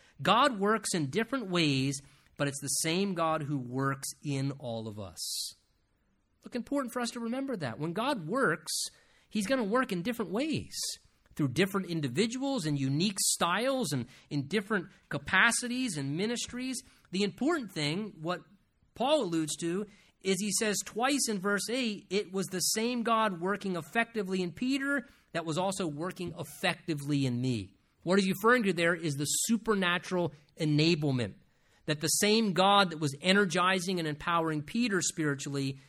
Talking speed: 160 wpm